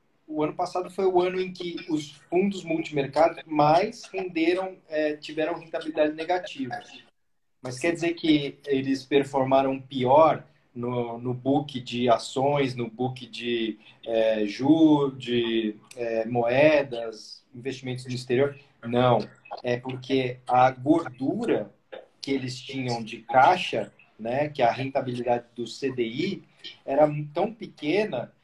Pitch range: 130-175 Hz